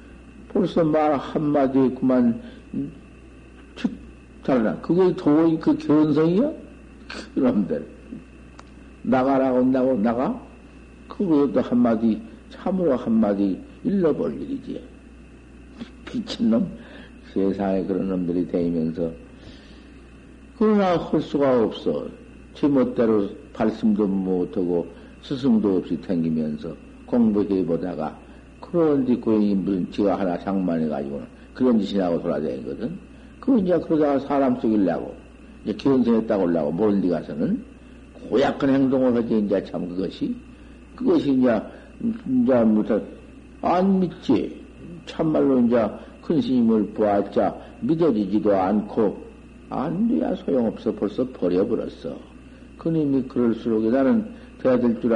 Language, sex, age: Korean, male, 50-69